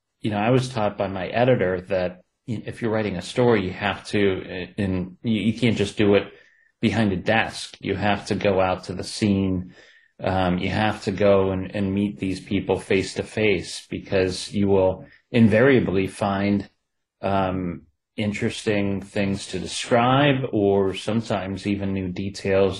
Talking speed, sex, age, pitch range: 165 wpm, male, 30-49, 95-105 Hz